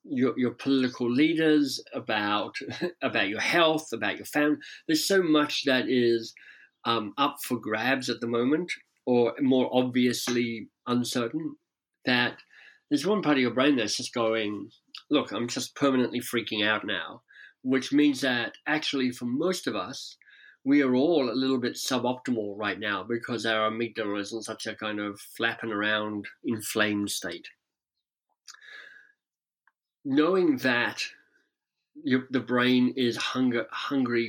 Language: English